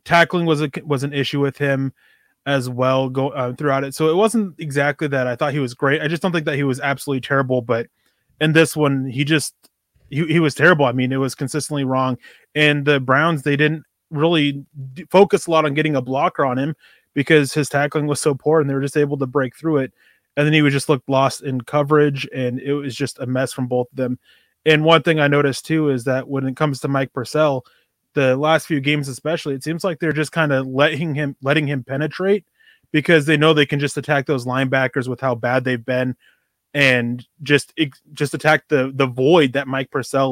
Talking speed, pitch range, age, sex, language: 230 wpm, 135-155 Hz, 20-39, male, English